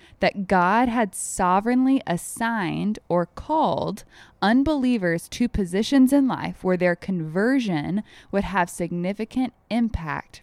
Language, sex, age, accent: English, female, 20-39, American